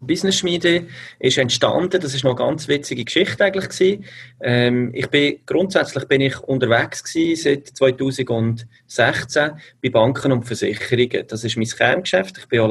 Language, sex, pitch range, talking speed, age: German, male, 115-155 Hz, 150 wpm, 30-49